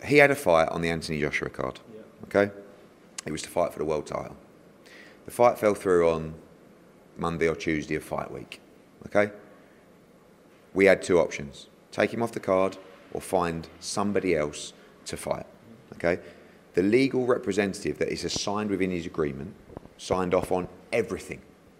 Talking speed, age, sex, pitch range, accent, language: 160 wpm, 30-49, male, 85-105 Hz, British, English